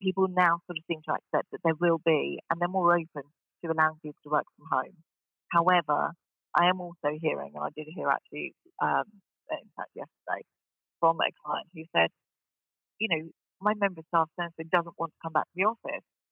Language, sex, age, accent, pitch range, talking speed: English, female, 40-59, British, 155-175 Hz, 200 wpm